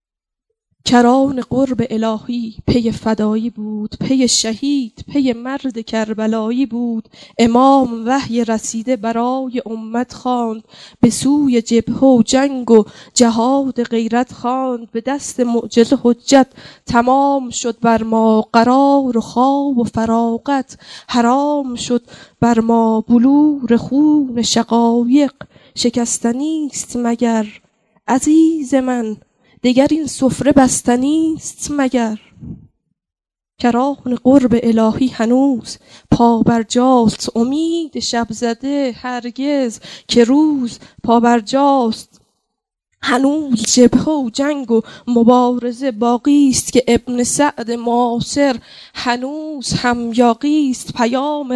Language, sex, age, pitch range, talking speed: Persian, female, 10-29, 230-270 Hz, 105 wpm